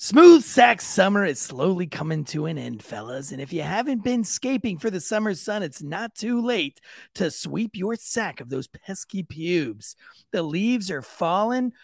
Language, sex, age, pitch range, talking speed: English, male, 30-49, 165-245 Hz, 180 wpm